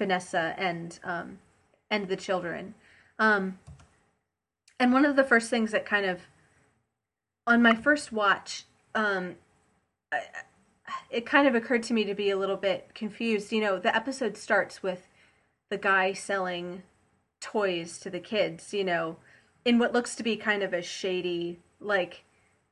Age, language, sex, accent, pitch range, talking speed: 30-49, English, female, American, 180-225 Hz, 155 wpm